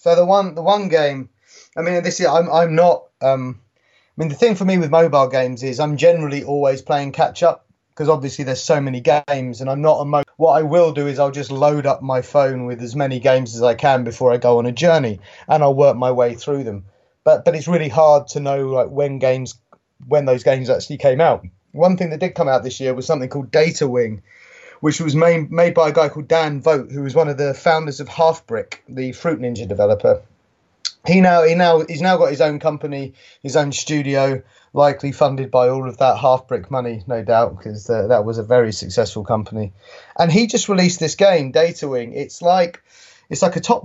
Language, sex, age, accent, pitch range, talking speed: English, male, 30-49, British, 130-165 Hz, 230 wpm